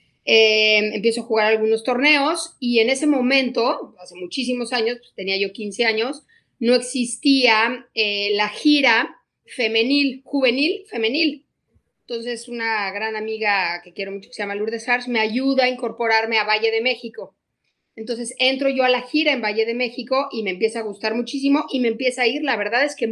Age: 40-59